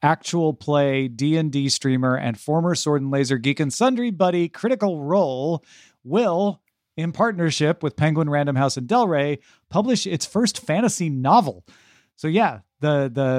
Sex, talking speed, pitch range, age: male, 155 wpm, 130-180 Hz, 40-59